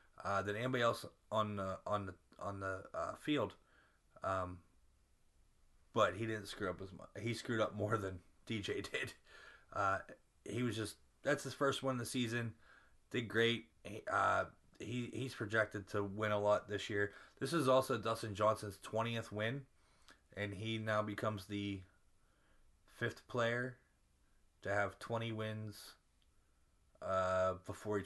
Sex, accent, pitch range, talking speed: male, American, 95-120 Hz, 150 wpm